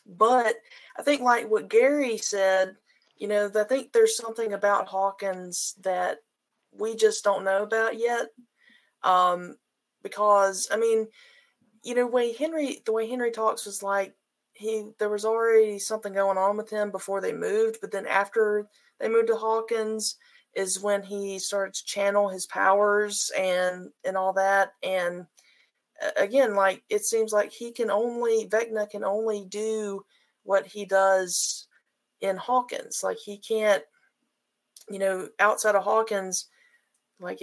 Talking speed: 150 wpm